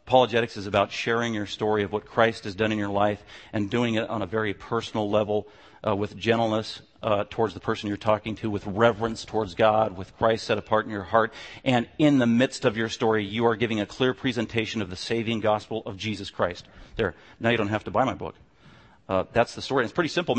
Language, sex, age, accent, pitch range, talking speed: English, male, 40-59, American, 110-130 Hz, 235 wpm